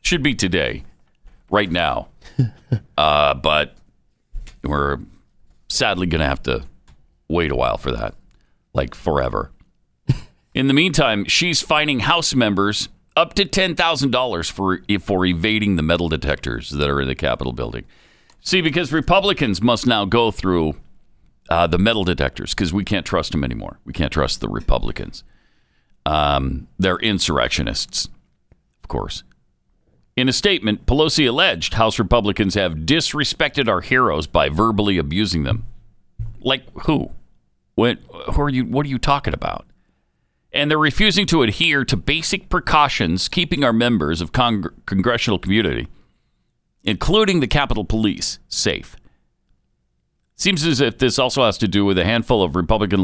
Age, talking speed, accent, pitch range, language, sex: 50-69, 145 wpm, American, 80-135 Hz, English, male